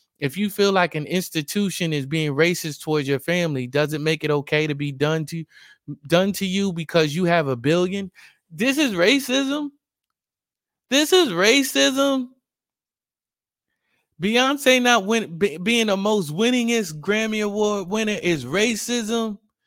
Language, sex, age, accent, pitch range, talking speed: English, male, 20-39, American, 165-205 Hz, 140 wpm